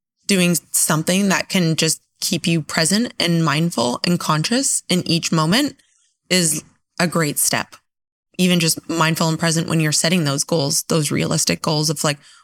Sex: female